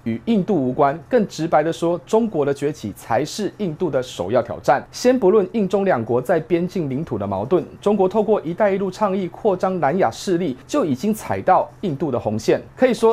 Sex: male